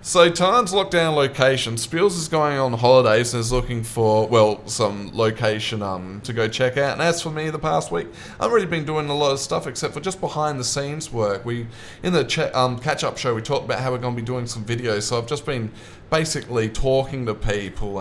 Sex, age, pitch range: male, 20-39, 110-150 Hz